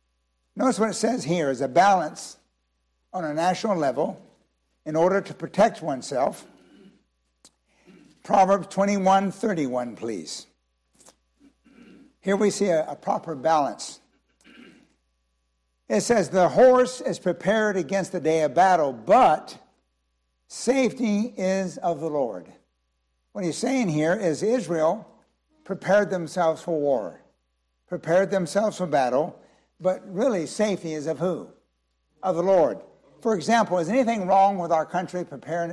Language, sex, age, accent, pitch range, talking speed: English, male, 60-79, American, 145-195 Hz, 130 wpm